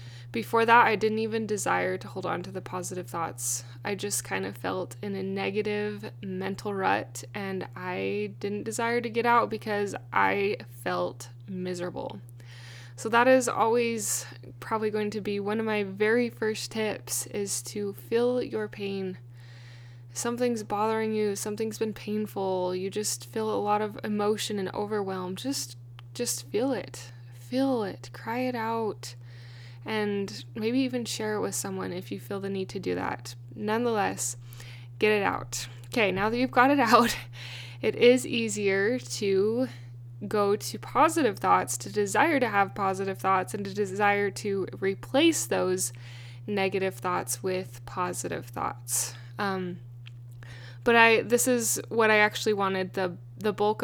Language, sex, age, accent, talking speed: English, female, 10-29, American, 155 wpm